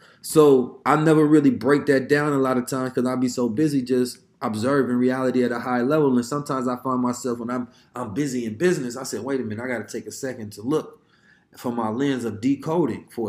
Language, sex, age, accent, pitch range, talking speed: English, male, 20-39, American, 130-160 Hz, 235 wpm